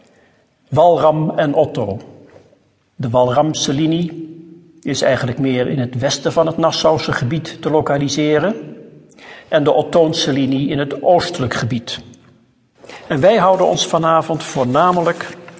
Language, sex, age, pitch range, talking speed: Dutch, male, 50-69, 135-165 Hz, 125 wpm